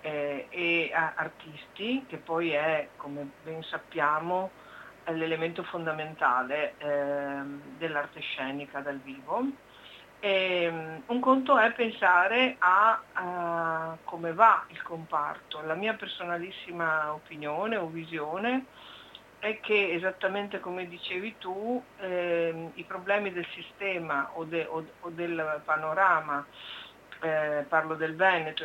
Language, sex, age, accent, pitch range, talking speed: Italian, female, 50-69, native, 155-190 Hz, 110 wpm